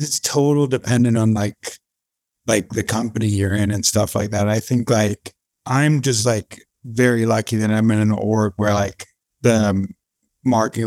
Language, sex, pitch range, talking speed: English, male, 100-115 Hz, 170 wpm